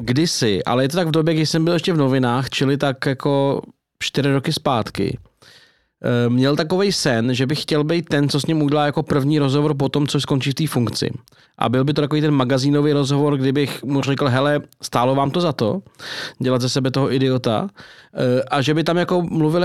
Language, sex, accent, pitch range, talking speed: Czech, male, native, 125-150 Hz, 210 wpm